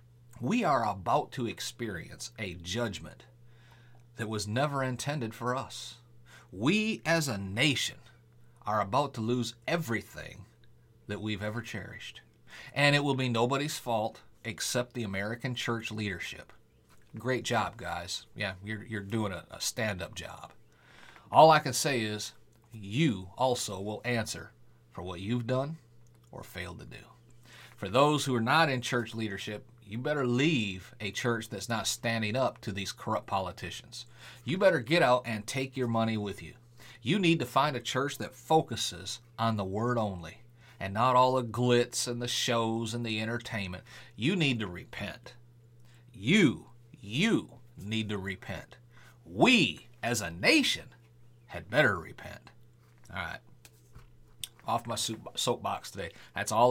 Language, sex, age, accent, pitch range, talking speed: English, male, 40-59, American, 110-125 Hz, 150 wpm